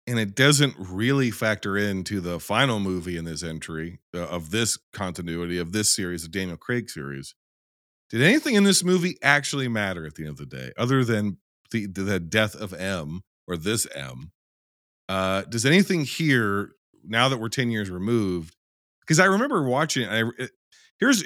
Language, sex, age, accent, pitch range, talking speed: English, male, 40-59, American, 90-115 Hz, 180 wpm